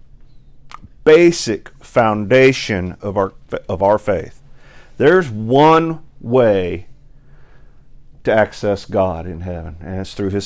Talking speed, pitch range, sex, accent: 110 wpm, 120-160 Hz, male, American